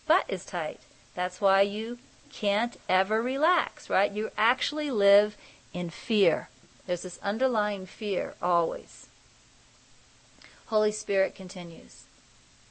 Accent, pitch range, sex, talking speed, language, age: American, 180-225 Hz, female, 105 wpm, English, 40-59